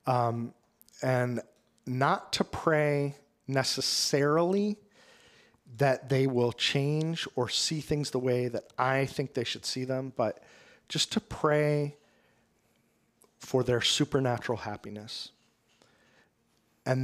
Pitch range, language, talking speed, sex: 115-145 Hz, English, 110 wpm, male